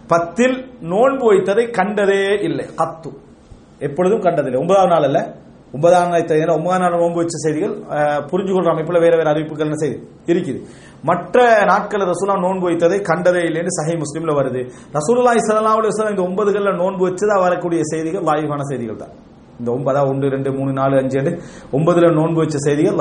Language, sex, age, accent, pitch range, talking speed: English, male, 40-59, Indian, 150-200 Hz, 140 wpm